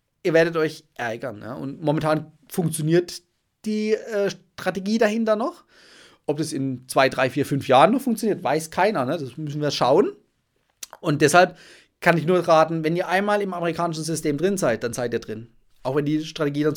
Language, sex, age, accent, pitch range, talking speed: German, male, 30-49, German, 145-185 Hz, 185 wpm